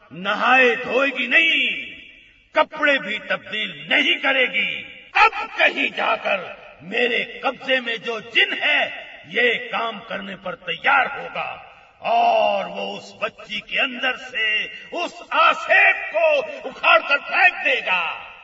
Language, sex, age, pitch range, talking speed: Hindi, male, 50-69, 230-340 Hz, 120 wpm